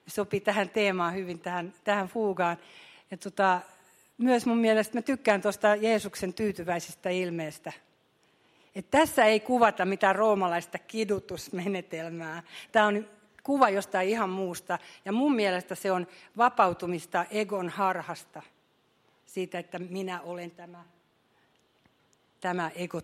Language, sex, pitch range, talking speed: Finnish, female, 175-205 Hz, 120 wpm